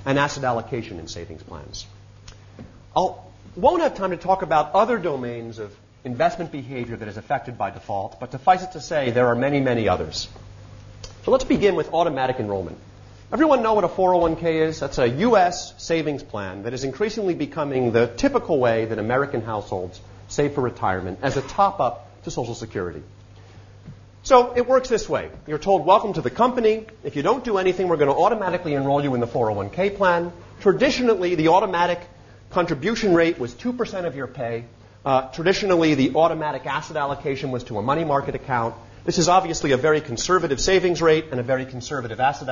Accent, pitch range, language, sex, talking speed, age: American, 115-180 Hz, English, male, 185 wpm, 40-59